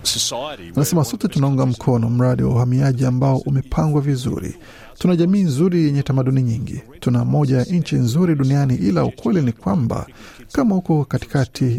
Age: 50-69